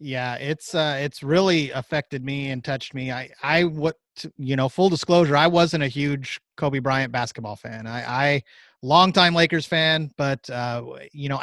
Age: 30-49